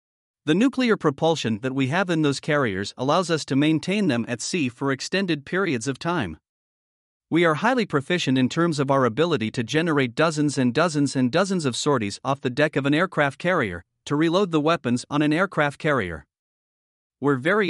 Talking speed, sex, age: 190 wpm, male, 50-69